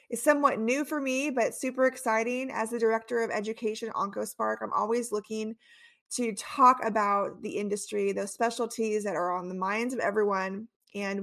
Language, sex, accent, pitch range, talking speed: English, female, American, 215-275 Hz, 170 wpm